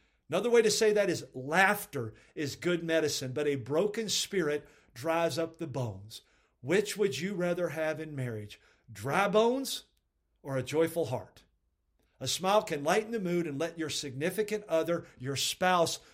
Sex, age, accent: male, 50-69, American